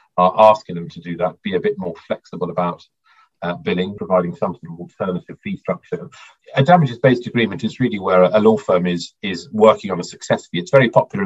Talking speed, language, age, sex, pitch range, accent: 220 wpm, English, 40-59, male, 90-140 Hz, British